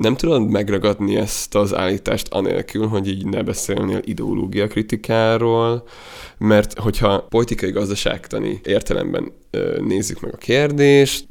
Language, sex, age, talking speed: Hungarian, male, 20-39, 110 wpm